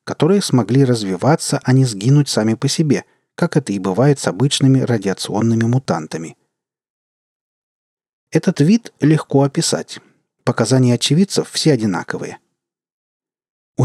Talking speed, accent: 115 wpm, native